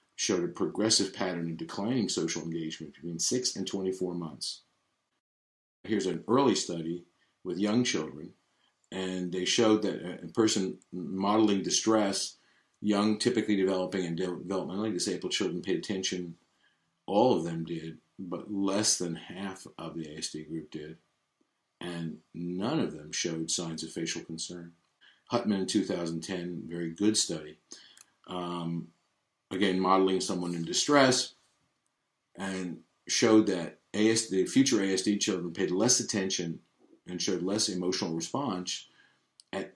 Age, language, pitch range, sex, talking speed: 50-69, English, 85-105 Hz, male, 130 wpm